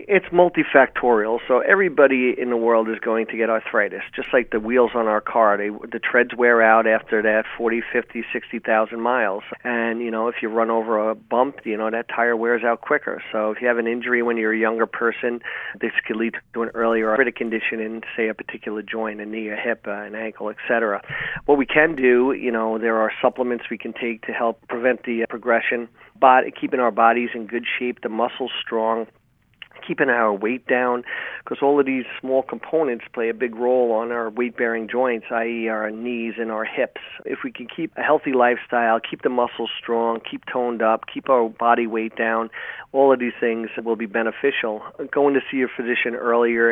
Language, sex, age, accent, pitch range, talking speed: English, male, 40-59, American, 110-120 Hz, 205 wpm